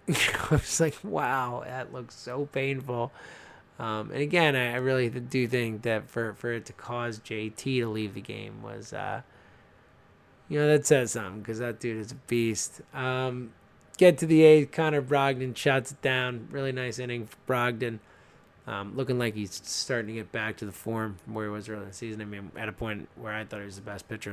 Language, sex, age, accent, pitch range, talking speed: English, male, 20-39, American, 115-145 Hz, 215 wpm